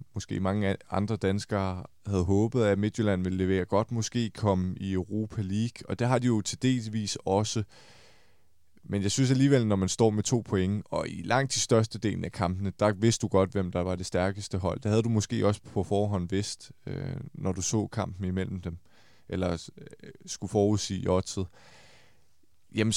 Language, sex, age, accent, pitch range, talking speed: Danish, male, 20-39, native, 95-115 Hz, 185 wpm